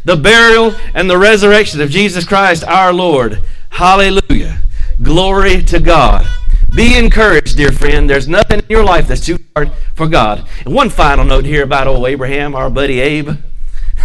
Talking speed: 165 wpm